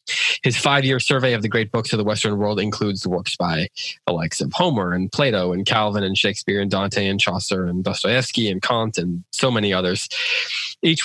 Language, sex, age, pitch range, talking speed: English, male, 20-39, 100-120 Hz, 205 wpm